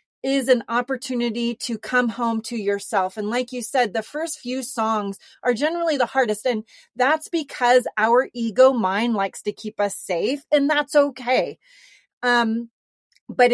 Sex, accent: female, American